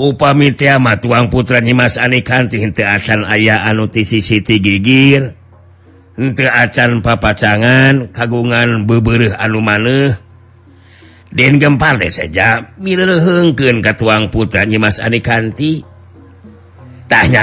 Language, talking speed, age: Indonesian, 95 wpm, 50-69